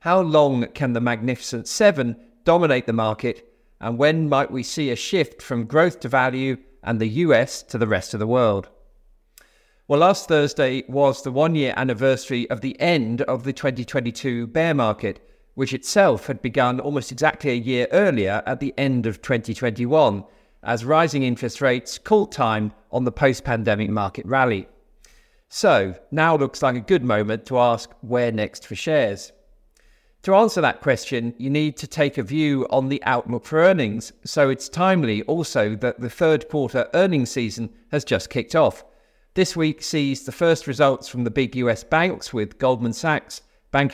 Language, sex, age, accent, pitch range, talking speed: English, male, 40-59, British, 120-150 Hz, 170 wpm